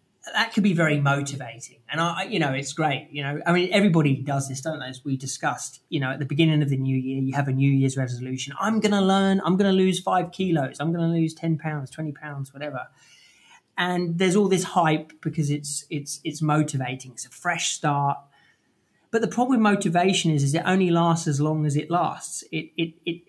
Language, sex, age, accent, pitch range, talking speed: English, male, 30-49, British, 140-175 Hz, 230 wpm